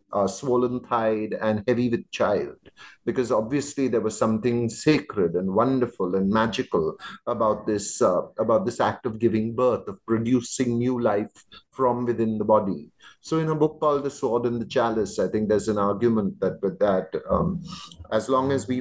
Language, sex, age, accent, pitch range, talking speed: English, male, 30-49, Indian, 110-130 Hz, 180 wpm